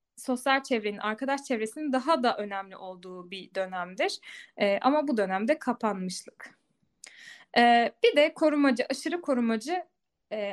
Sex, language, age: female, Turkish, 10-29